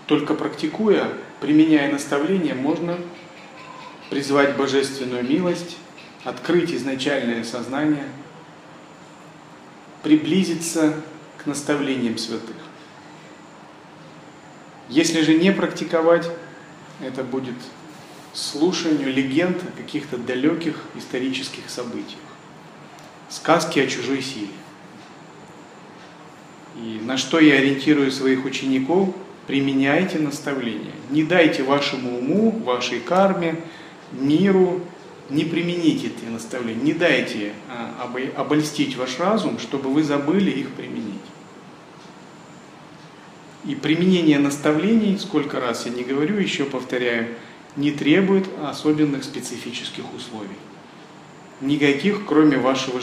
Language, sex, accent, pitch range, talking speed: Russian, male, native, 130-165 Hz, 90 wpm